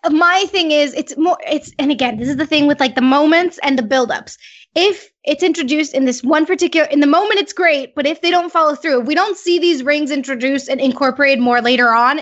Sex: female